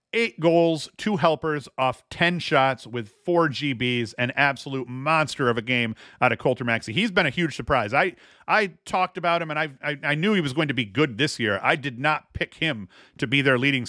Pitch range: 120-150 Hz